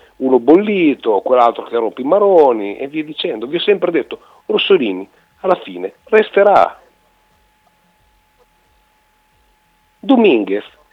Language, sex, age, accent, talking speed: Italian, male, 50-69, native, 105 wpm